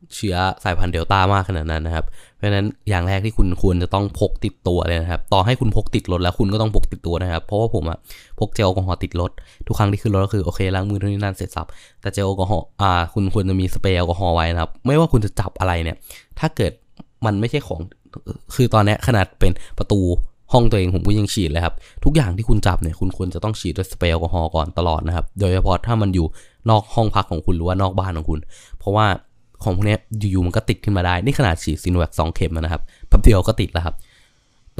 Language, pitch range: Thai, 85-110 Hz